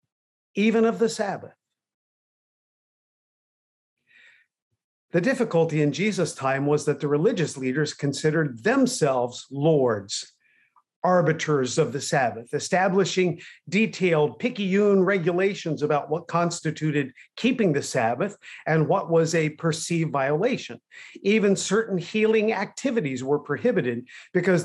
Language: English